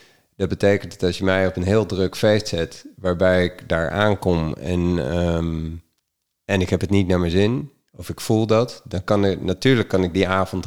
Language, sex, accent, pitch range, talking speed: Dutch, male, Dutch, 85-100 Hz, 215 wpm